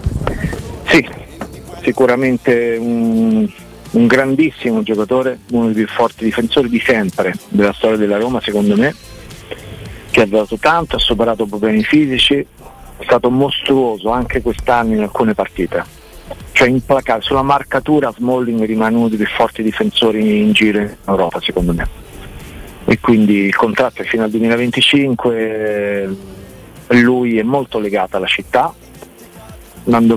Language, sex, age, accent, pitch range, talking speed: Italian, male, 50-69, native, 105-125 Hz, 130 wpm